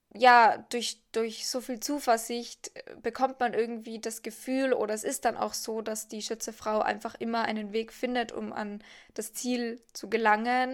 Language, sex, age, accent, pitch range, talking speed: German, female, 10-29, German, 220-250 Hz, 175 wpm